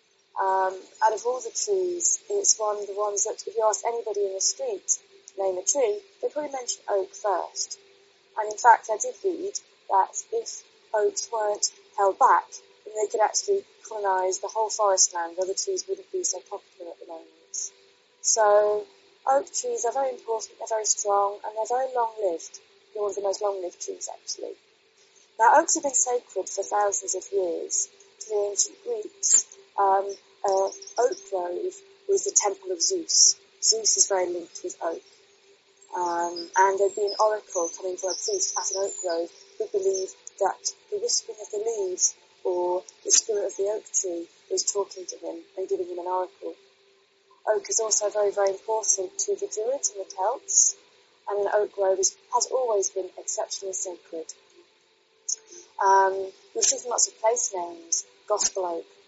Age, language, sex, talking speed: 20-39, English, female, 180 wpm